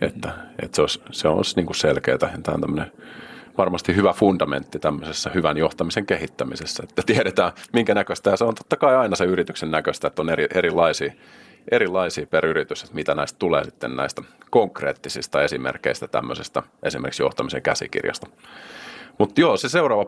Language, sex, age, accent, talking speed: Finnish, male, 30-49, native, 155 wpm